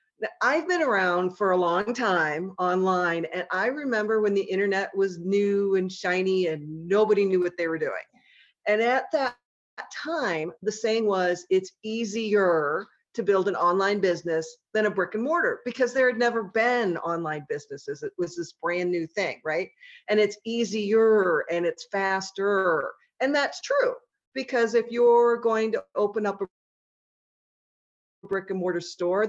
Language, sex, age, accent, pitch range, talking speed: English, female, 40-59, American, 180-230 Hz, 160 wpm